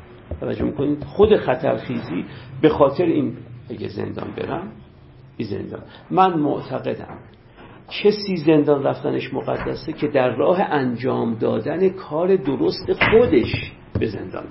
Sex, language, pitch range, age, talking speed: male, Persian, 115-165 Hz, 50-69, 105 wpm